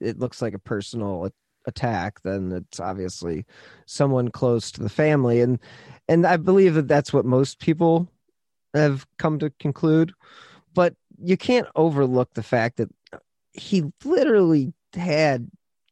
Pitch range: 110-155 Hz